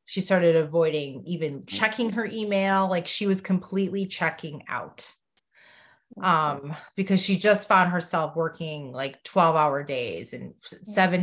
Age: 20-39